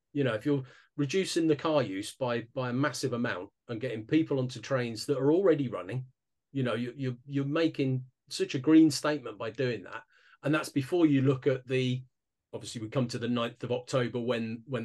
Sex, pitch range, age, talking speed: male, 120-145 Hz, 40-59, 210 wpm